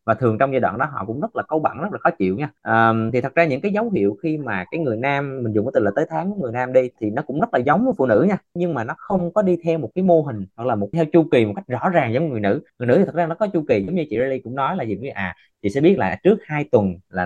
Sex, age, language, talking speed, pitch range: male, 20-39, Vietnamese, 350 wpm, 115-165 Hz